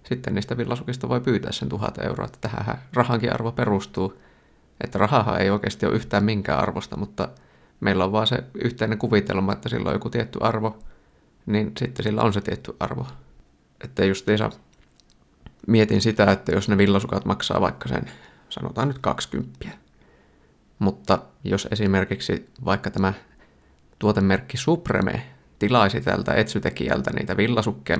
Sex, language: male, Finnish